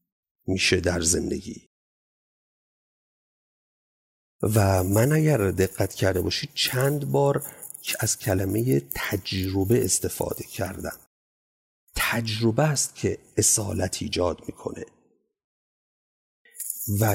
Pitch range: 90-125 Hz